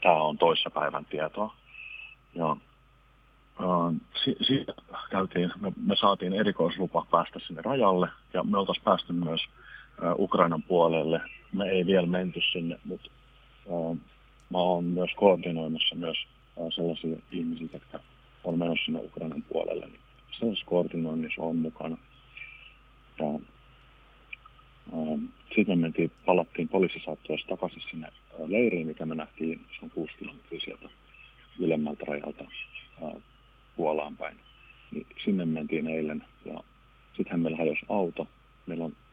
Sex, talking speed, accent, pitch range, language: male, 110 wpm, native, 80-95 Hz, Finnish